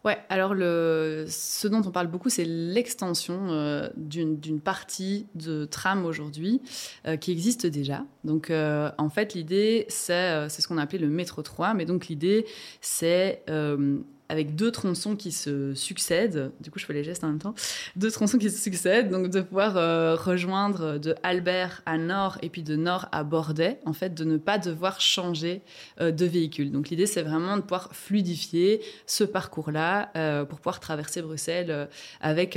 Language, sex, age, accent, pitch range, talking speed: French, female, 20-39, French, 155-190 Hz, 185 wpm